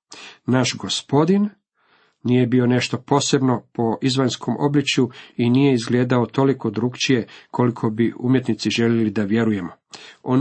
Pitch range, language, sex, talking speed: 115-135 Hz, Croatian, male, 120 wpm